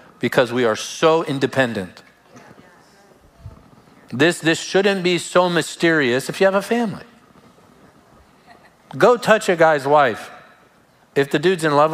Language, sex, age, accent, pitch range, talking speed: English, male, 50-69, American, 135-185 Hz, 130 wpm